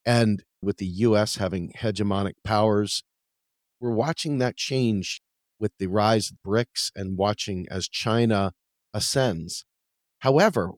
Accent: American